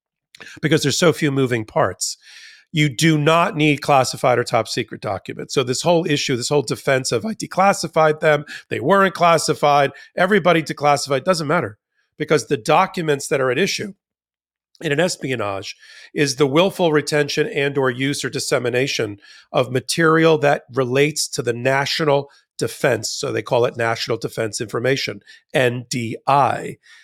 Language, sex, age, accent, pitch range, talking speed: English, male, 40-59, American, 140-190 Hz, 150 wpm